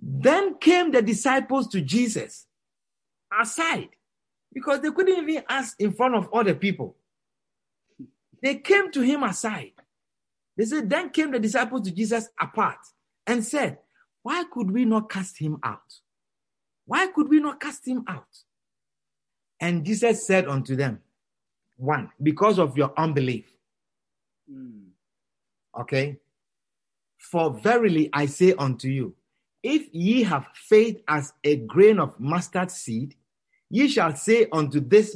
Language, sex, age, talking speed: English, male, 50-69, 135 wpm